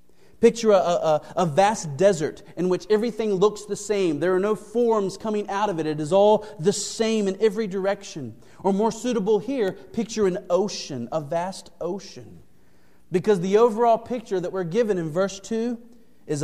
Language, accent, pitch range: English, American, 135-200 Hz